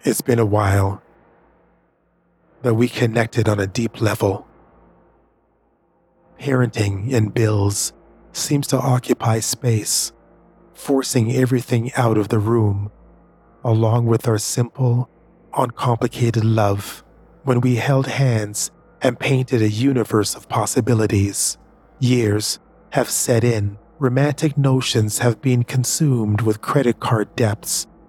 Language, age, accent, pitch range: English, 40-59, American, 110-135 Hz